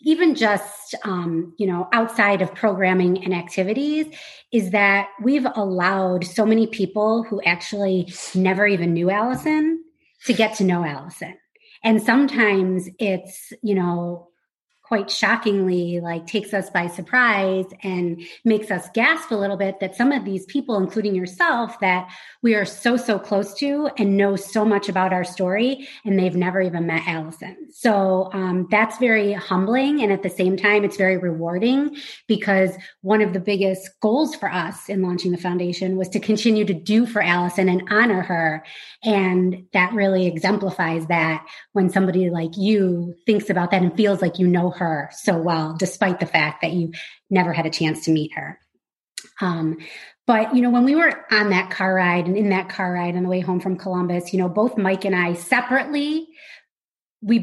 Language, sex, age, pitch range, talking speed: English, female, 30-49, 180-220 Hz, 180 wpm